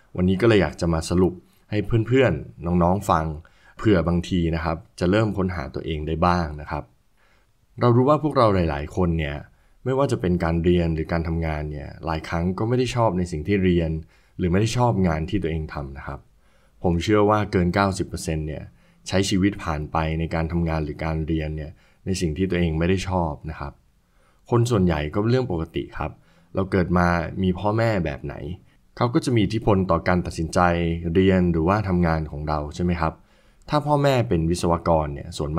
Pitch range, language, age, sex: 80-100 Hz, Thai, 20-39, male